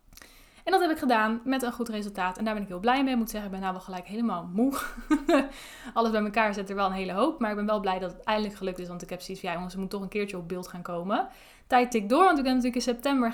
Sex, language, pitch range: female, Dutch, 200-255 Hz